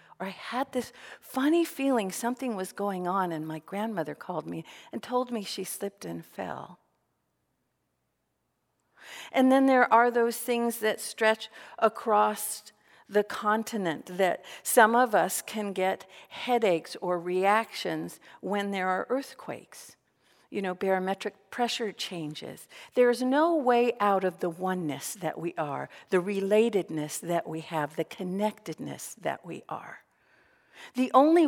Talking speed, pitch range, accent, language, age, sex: 140 wpm, 180-235 Hz, American, English, 50-69, female